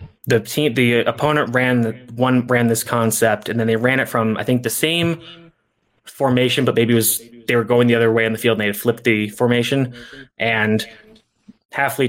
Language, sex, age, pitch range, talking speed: English, male, 20-39, 110-125 Hz, 210 wpm